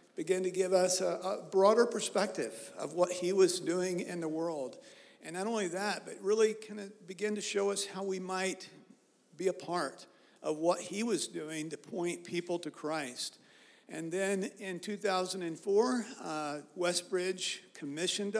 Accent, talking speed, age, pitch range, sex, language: American, 165 wpm, 50-69, 160-190 Hz, male, English